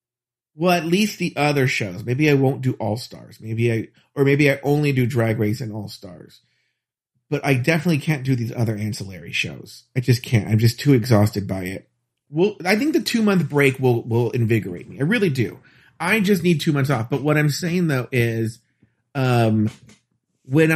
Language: English